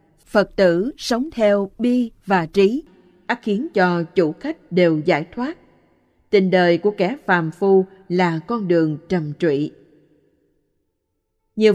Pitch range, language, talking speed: 175-200 Hz, Vietnamese, 140 wpm